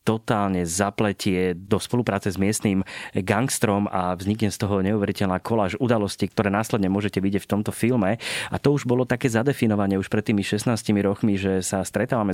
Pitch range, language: 100-115 Hz, Slovak